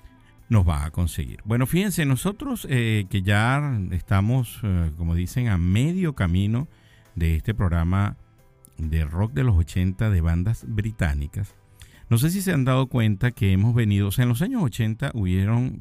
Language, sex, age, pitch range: Spanish, male, 50-69, 90-115 Hz